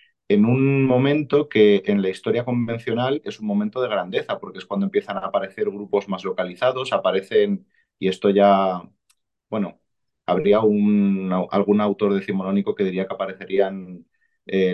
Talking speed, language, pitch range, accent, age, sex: 145 wpm, Spanish, 100-140 Hz, Spanish, 30-49, male